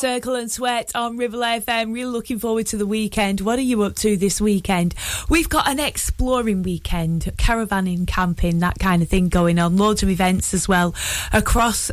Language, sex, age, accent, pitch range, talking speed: English, female, 20-39, British, 175-230 Hz, 195 wpm